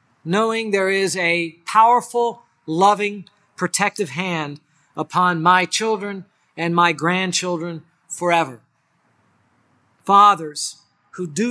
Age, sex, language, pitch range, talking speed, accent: 50-69, male, English, 150-195 Hz, 95 wpm, American